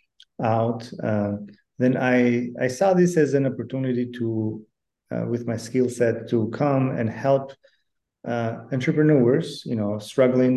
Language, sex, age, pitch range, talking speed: English, male, 30-49, 105-120 Hz, 140 wpm